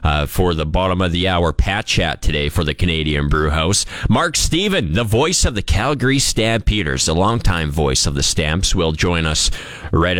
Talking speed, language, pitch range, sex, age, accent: 195 wpm, English, 90-125 Hz, male, 30-49, American